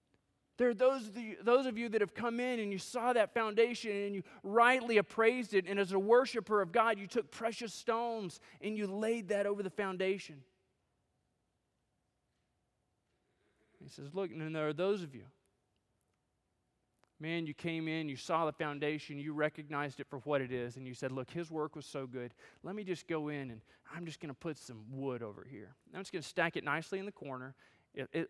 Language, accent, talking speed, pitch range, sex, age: English, American, 200 wpm, 150-240 Hz, male, 20-39